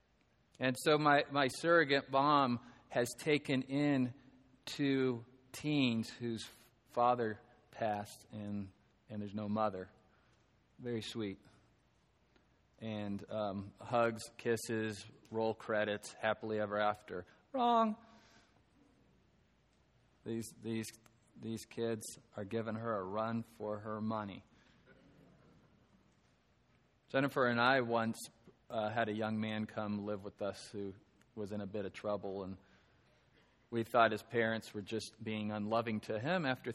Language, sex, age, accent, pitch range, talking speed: English, male, 40-59, American, 105-125 Hz, 120 wpm